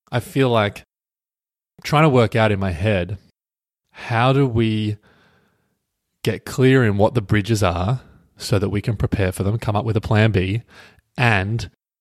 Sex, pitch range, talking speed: male, 100-120 Hz, 170 wpm